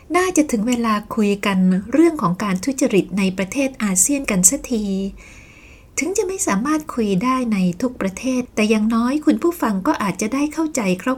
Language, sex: Thai, female